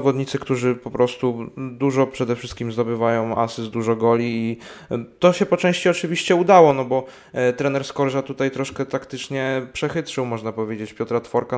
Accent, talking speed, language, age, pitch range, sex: native, 160 wpm, Polish, 20-39, 120-140 Hz, male